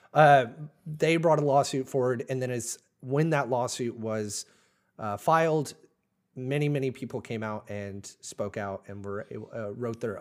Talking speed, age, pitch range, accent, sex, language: 165 wpm, 30-49, 115-145 Hz, American, male, English